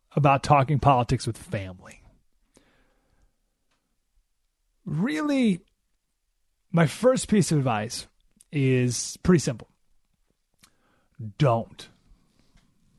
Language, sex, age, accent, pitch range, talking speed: English, male, 30-49, American, 125-180 Hz, 70 wpm